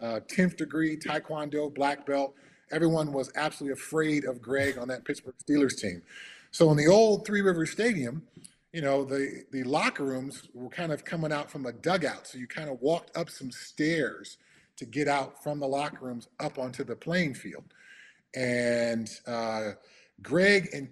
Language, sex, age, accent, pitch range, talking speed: English, male, 30-49, American, 135-185 Hz, 180 wpm